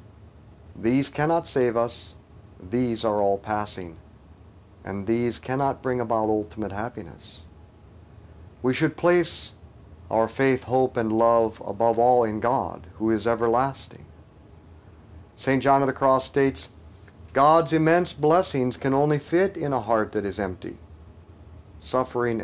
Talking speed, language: 130 wpm, English